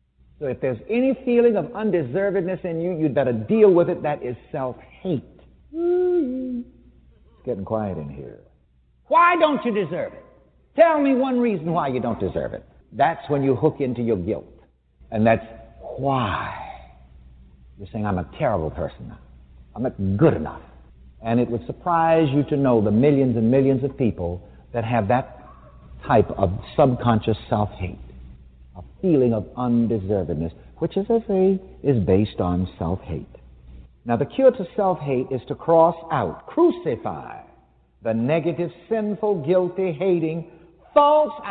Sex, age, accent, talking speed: male, 60-79, American, 150 wpm